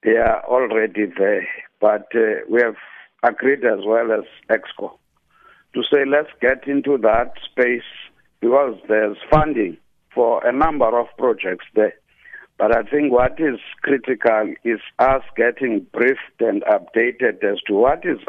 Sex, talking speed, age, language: male, 150 wpm, 60-79, English